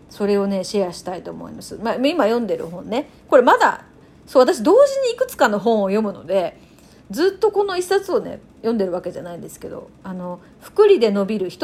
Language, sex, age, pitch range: Japanese, female, 40-59, 205-340 Hz